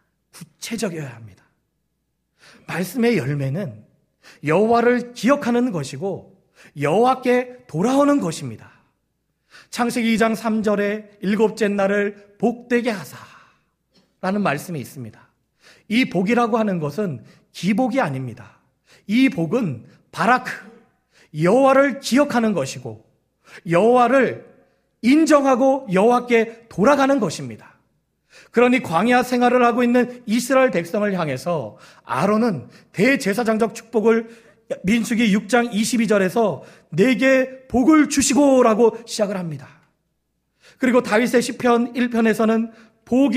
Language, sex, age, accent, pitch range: Korean, male, 40-59, native, 185-245 Hz